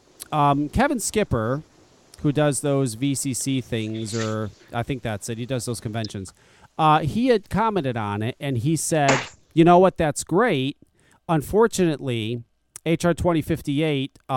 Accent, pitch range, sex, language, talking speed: American, 120-180 Hz, male, English, 150 wpm